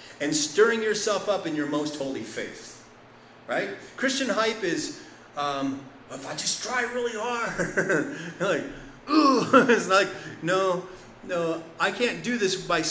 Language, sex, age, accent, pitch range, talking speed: English, male, 30-49, American, 160-245 Hz, 145 wpm